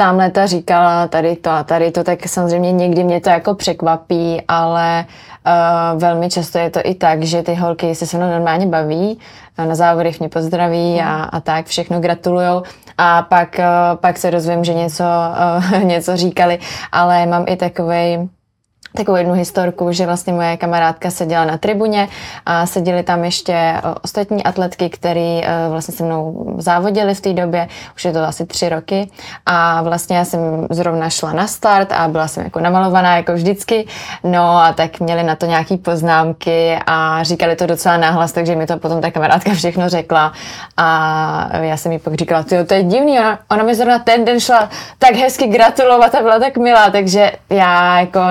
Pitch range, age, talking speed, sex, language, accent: 165-185 Hz, 20-39, 185 wpm, female, Czech, native